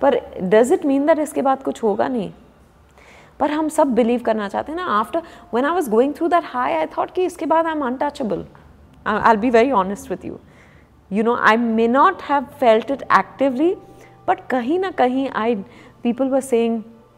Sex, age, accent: female, 30-49, native